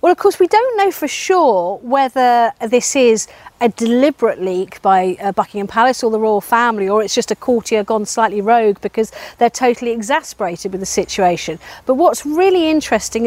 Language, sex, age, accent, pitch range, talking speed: English, female, 40-59, British, 220-270 Hz, 185 wpm